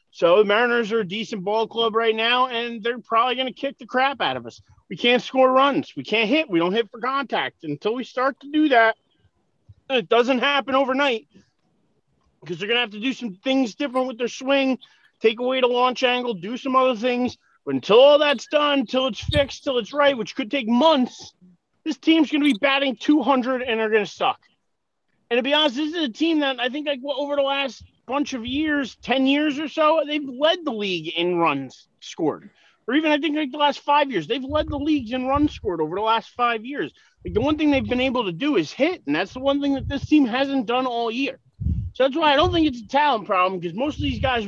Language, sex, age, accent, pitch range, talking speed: English, male, 30-49, American, 220-285 Hz, 245 wpm